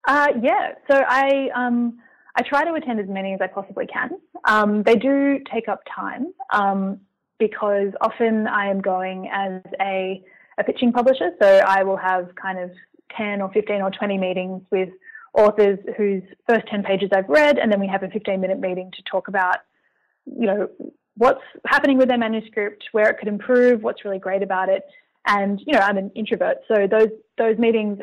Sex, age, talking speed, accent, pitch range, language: female, 20-39, 190 wpm, Australian, 195-245 Hz, English